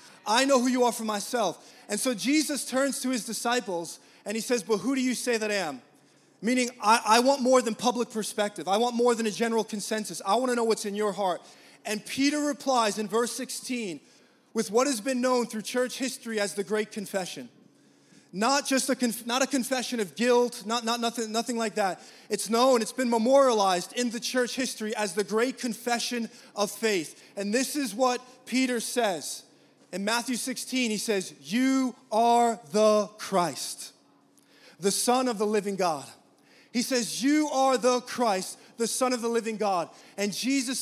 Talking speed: 195 wpm